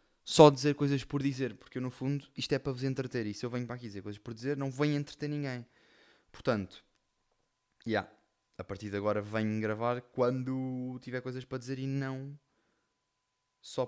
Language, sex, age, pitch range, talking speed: Portuguese, male, 20-39, 100-130 Hz, 190 wpm